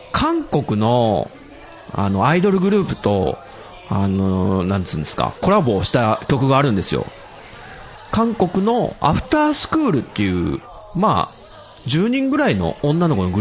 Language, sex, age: Japanese, male, 40-59